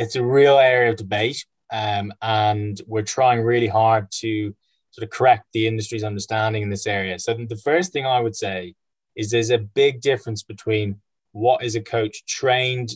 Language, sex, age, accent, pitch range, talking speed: English, male, 10-29, British, 105-125 Hz, 185 wpm